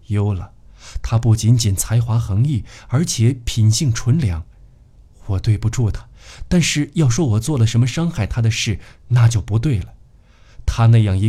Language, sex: Chinese, male